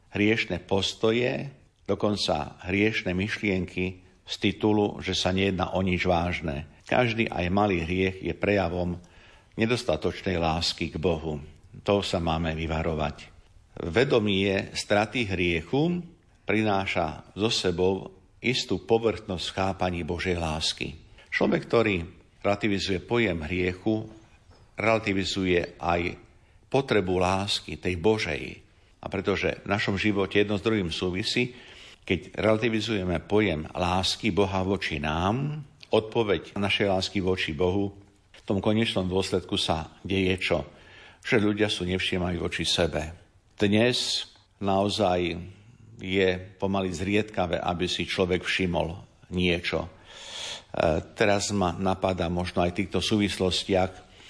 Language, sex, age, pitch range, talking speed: Slovak, male, 50-69, 90-105 Hz, 115 wpm